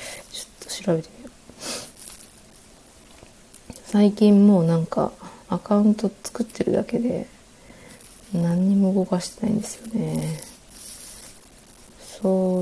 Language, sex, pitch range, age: Japanese, female, 170-210 Hz, 30-49